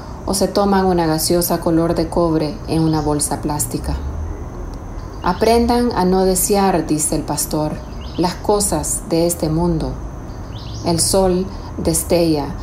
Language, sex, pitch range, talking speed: Spanish, female, 160-190 Hz, 130 wpm